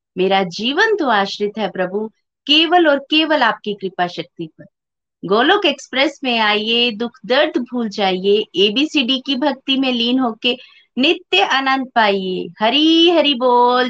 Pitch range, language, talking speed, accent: 205-265 Hz, Hindi, 145 wpm, native